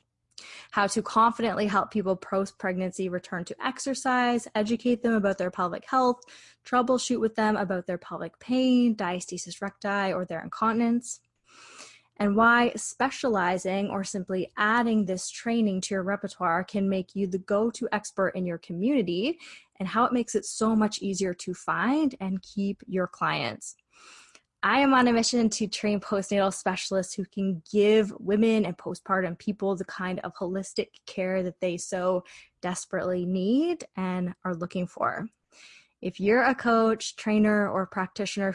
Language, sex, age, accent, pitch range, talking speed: English, female, 20-39, American, 185-225 Hz, 155 wpm